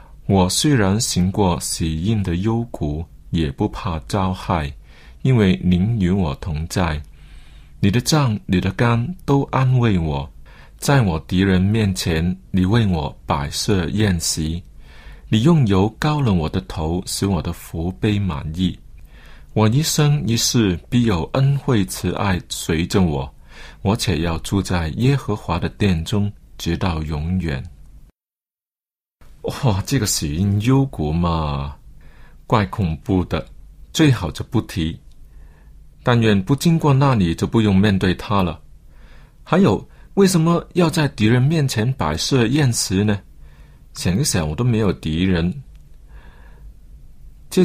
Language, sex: Chinese, male